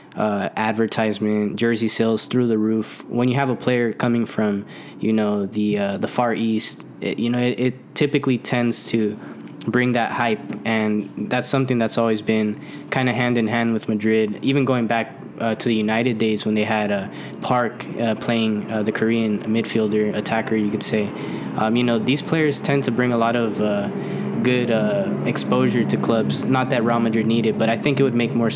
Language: English